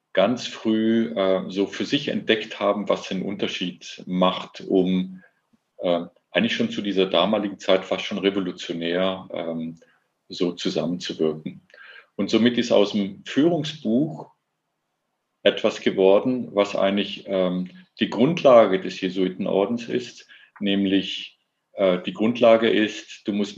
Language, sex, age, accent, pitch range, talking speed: German, male, 50-69, German, 95-120 Hz, 125 wpm